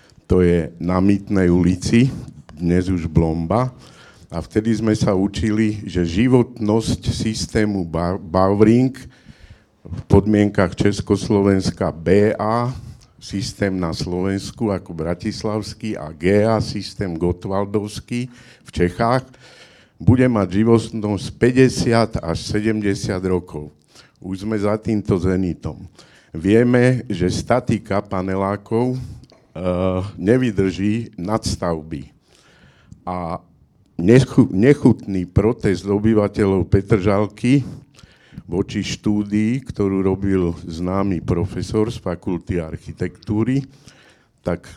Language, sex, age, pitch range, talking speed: Slovak, male, 70-89, 95-115 Hz, 90 wpm